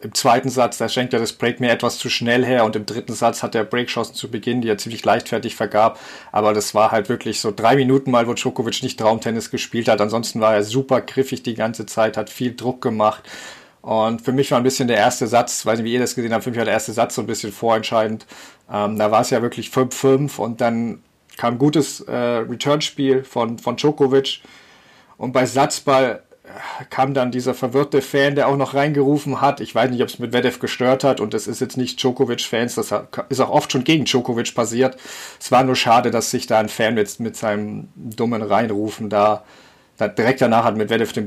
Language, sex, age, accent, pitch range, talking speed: German, male, 40-59, German, 110-130 Hz, 225 wpm